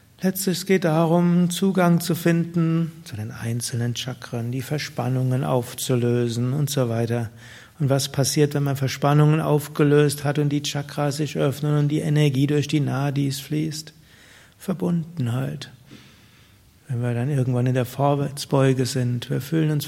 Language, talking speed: German, 150 wpm